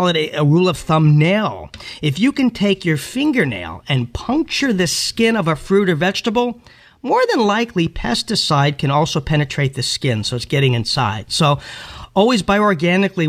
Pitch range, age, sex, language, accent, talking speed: 150-200 Hz, 40-59, male, English, American, 165 wpm